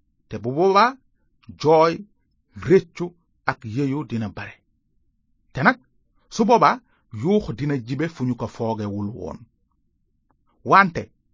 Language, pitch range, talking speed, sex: French, 115-175 Hz, 95 wpm, male